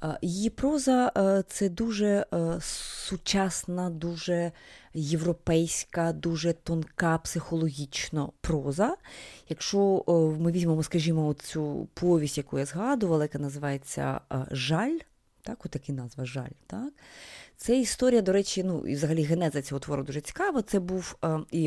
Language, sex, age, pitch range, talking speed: Ukrainian, female, 30-49, 160-215 Hz, 120 wpm